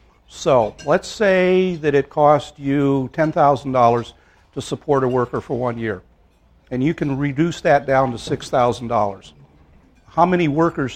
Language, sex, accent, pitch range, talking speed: English, male, American, 120-155 Hz, 140 wpm